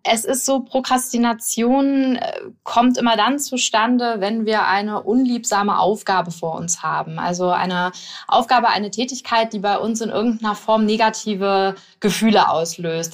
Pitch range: 195-245 Hz